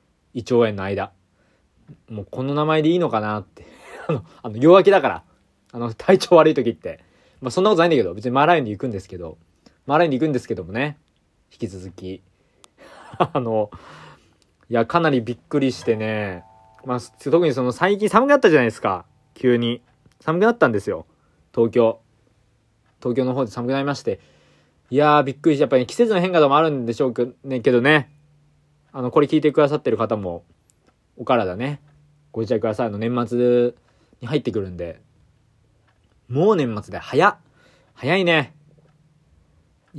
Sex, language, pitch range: male, Japanese, 110-150 Hz